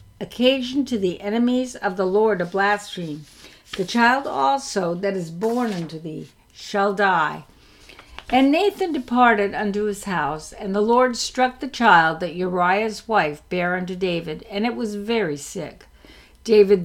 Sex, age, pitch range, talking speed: female, 60-79, 185-250 Hz, 155 wpm